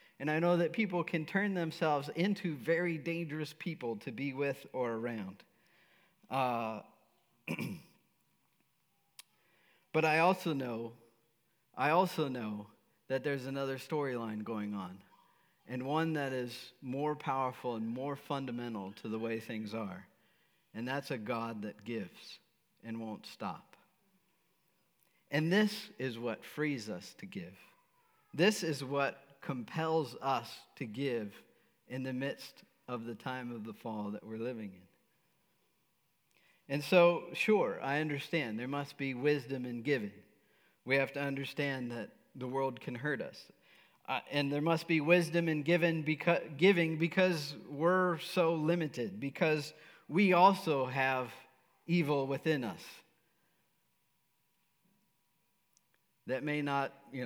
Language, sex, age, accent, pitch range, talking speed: English, male, 50-69, American, 125-165 Hz, 135 wpm